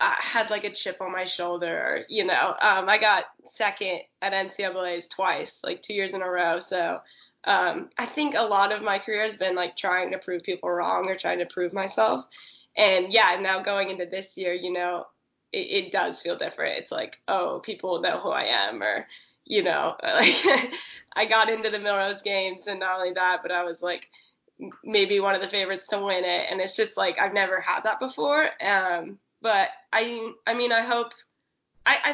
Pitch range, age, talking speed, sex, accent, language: 180-215 Hz, 10-29, 205 wpm, female, American, English